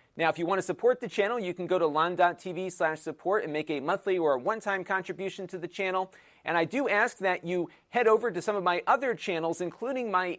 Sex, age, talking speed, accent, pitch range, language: male, 40-59, 235 wpm, American, 150-195 Hz, English